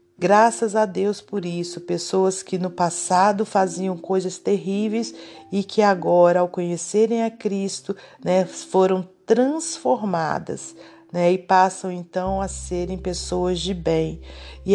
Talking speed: 130 wpm